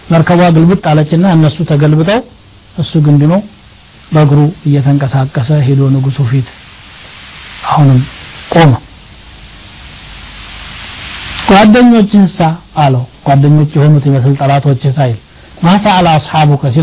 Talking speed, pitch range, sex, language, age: 90 wpm, 130-175 Hz, male, Amharic, 60-79